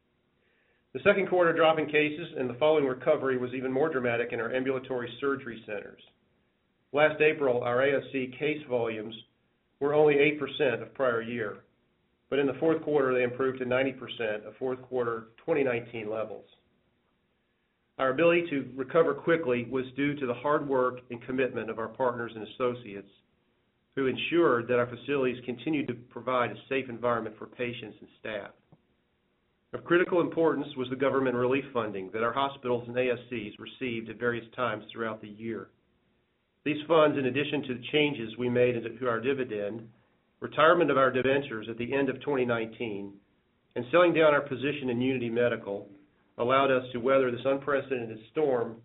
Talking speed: 165 wpm